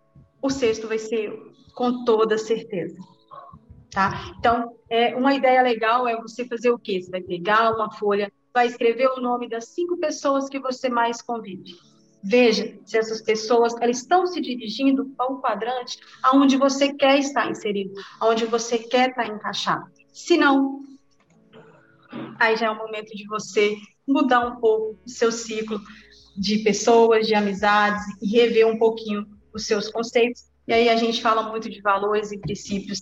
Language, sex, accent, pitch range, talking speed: Portuguese, female, Brazilian, 215-260 Hz, 165 wpm